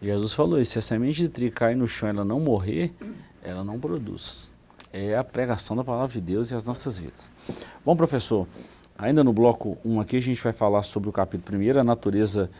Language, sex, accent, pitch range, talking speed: Portuguese, male, Brazilian, 100-140 Hz, 220 wpm